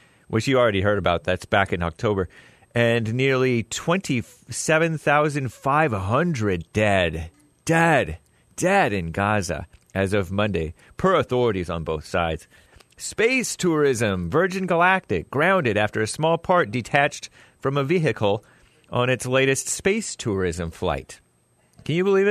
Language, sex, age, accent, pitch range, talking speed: English, male, 30-49, American, 100-130 Hz, 125 wpm